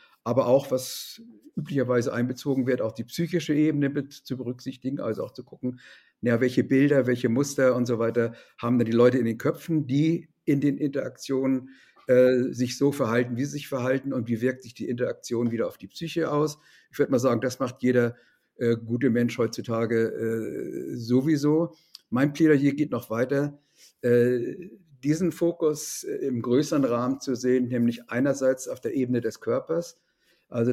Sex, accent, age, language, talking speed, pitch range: male, German, 50-69, German, 175 wpm, 120-145 Hz